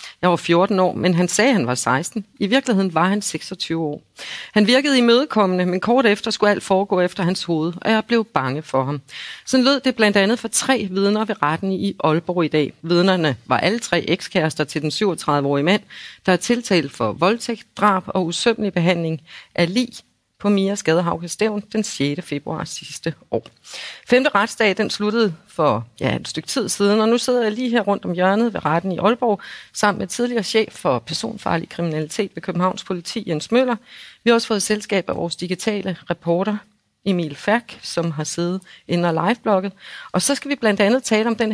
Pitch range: 165-220 Hz